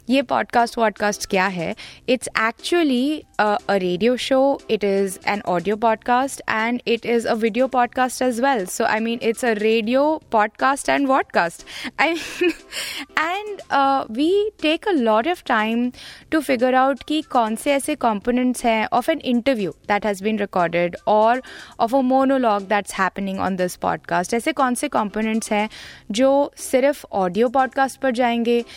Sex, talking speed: female, 155 wpm